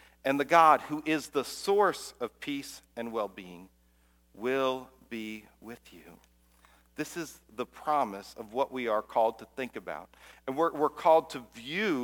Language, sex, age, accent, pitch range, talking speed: English, male, 40-59, American, 125-155 Hz, 165 wpm